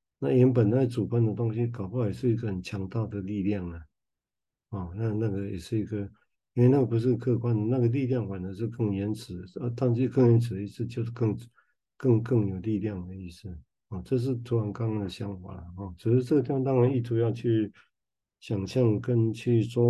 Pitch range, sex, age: 100-120 Hz, male, 60-79